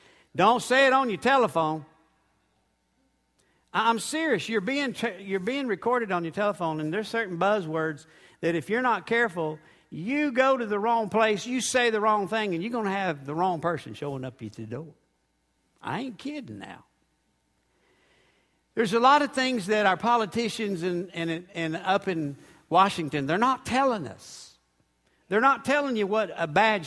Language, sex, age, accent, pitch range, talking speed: English, male, 60-79, American, 175-260 Hz, 175 wpm